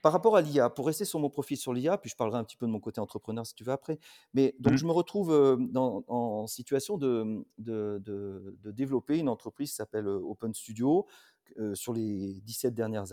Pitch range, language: 110-135 Hz, French